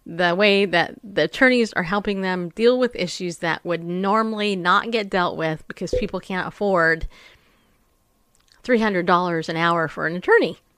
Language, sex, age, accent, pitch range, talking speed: English, female, 30-49, American, 170-230 Hz, 155 wpm